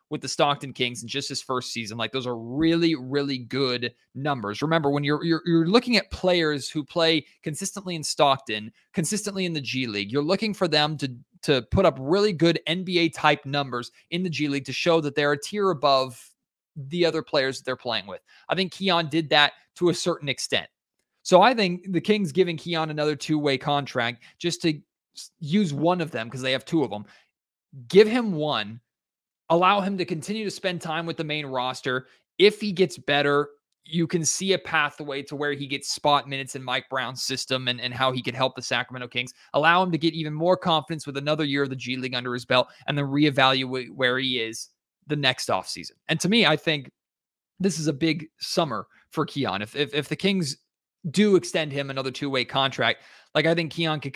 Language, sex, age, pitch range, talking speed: English, male, 20-39, 130-165 Hz, 215 wpm